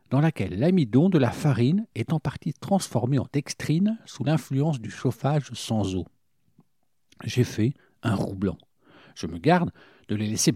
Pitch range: 115-155 Hz